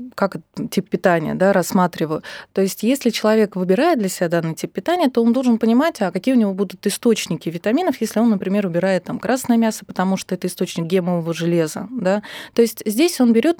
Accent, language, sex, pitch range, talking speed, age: native, Russian, female, 185-235 Hz, 200 wpm, 20-39